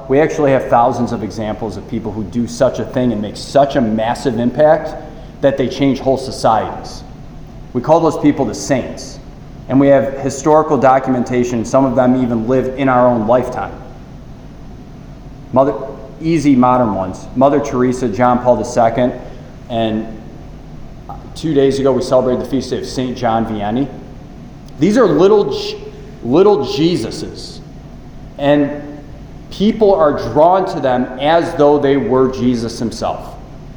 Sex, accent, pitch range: male, American, 125-150 Hz